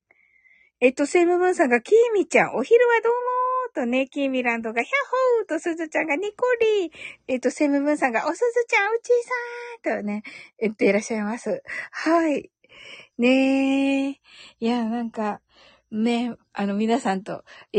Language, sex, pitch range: Japanese, female, 215-310 Hz